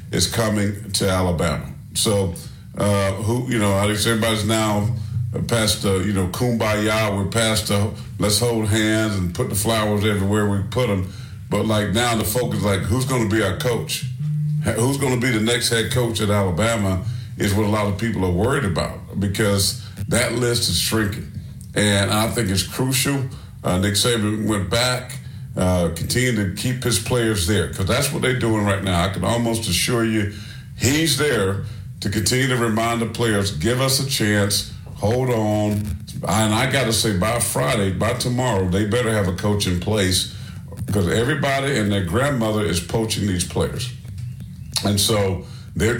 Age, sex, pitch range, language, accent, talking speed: 50-69, male, 100-120 Hz, English, American, 180 wpm